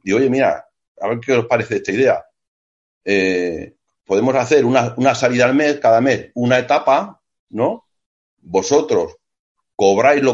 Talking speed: 150 wpm